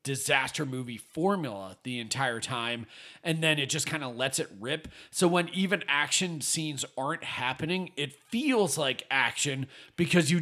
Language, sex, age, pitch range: English, male, 30-49, 130-170 Hz